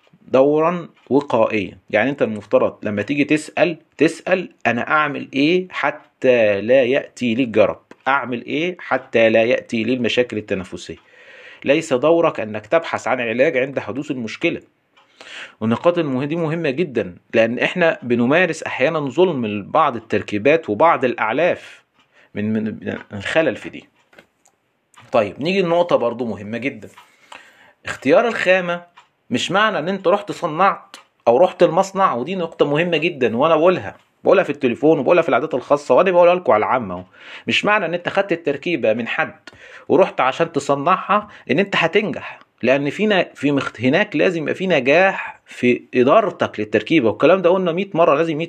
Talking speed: 145 wpm